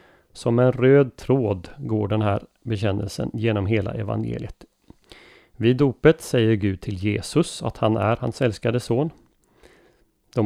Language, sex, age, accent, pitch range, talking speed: Swedish, male, 30-49, native, 105-125 Hz, 140 wpm